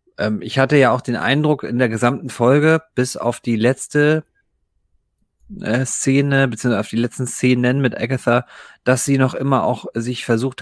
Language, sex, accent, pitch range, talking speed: German, male, German, 110-130 Hz, 165 wpm